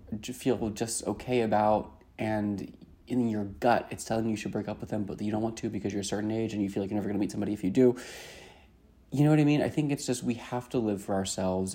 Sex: male